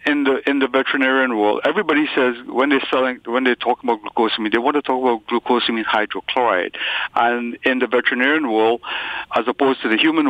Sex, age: male, 60-79